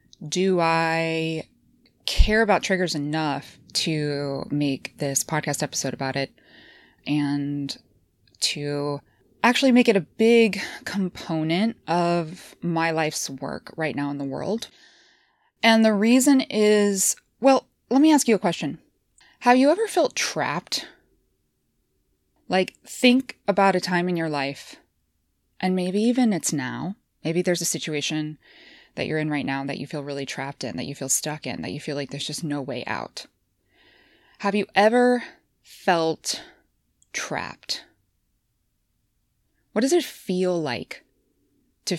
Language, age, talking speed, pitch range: English, 20-39, 140 wpm, 145-200 Hz